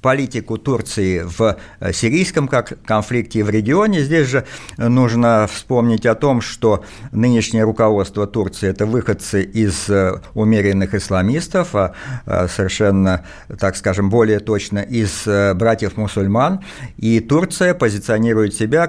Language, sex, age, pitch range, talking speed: Russian, male, 50-69, 100-130 Hz, 120 wpm